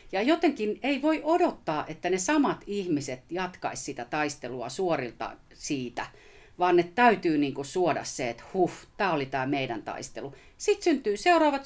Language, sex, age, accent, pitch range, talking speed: Finnish, female, 40-59, native, 140-230 Hz, 160 wpm